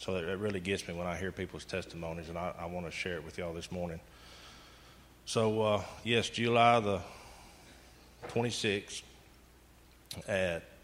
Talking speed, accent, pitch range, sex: 155 wpm, American, 80-95 Hz, male